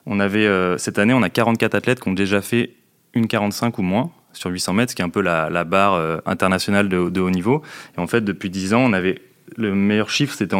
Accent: French